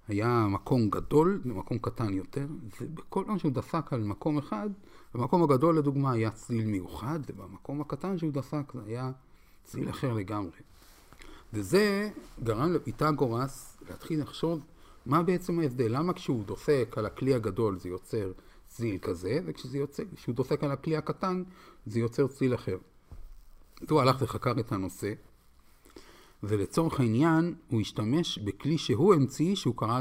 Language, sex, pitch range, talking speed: Hebrew, male, 100-150 Hz, 145 wpm